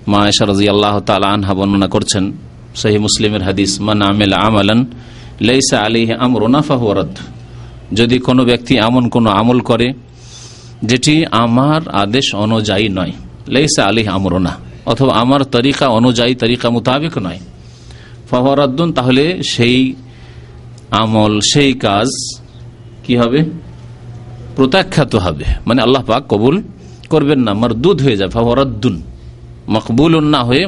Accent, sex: native, male